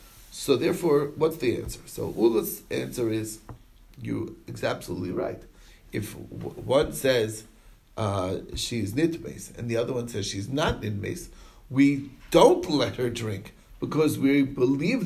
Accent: American